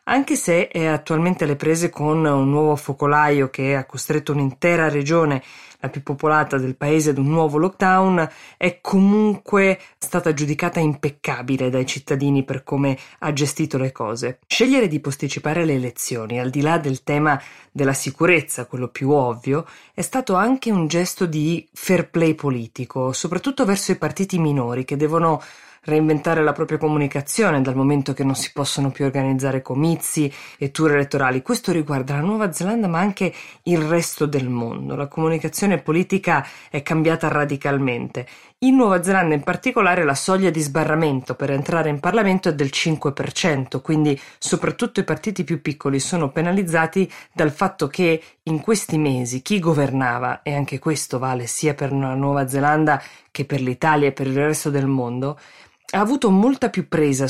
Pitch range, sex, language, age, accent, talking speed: 140-170 Hz, female, Italian, 20-39, native, 165 wpm